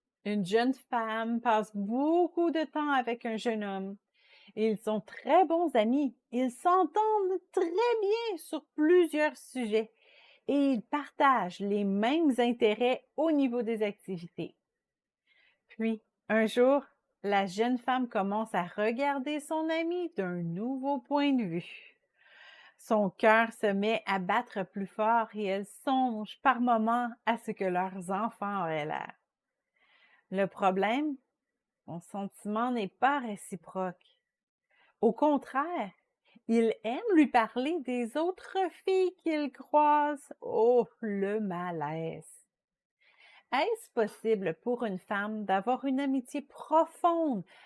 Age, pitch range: 40-59, 210-290 Hz